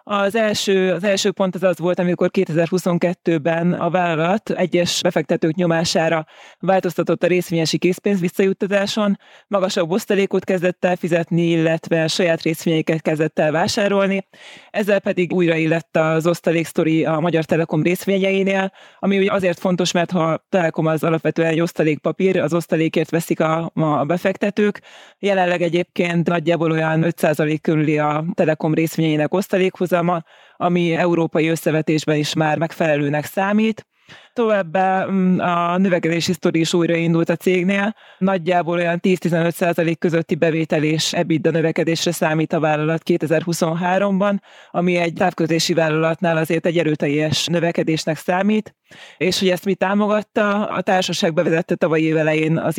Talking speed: 130 wpm